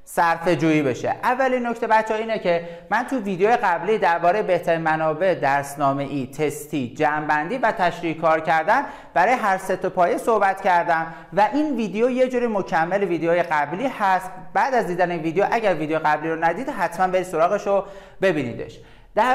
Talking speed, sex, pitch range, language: 165 wpm, male, 165-225 Hz, Persian